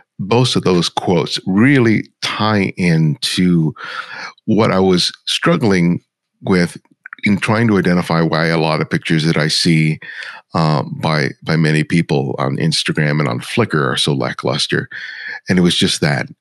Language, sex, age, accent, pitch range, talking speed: English, male, 50-69, American, 80-105 Hz, 155 wpm